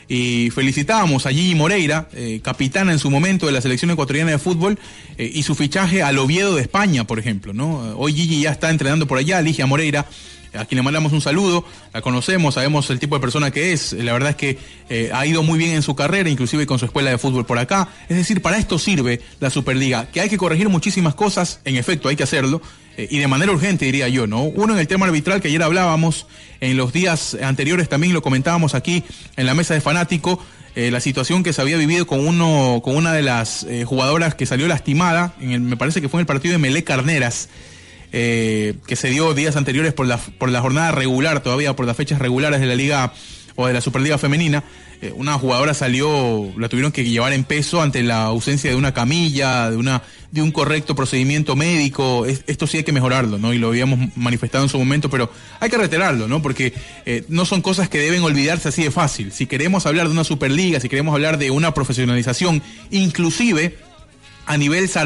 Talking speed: 220 wpm